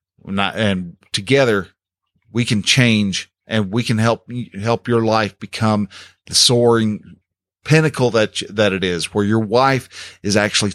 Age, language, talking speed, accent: 40-59, English, 145 wpm, American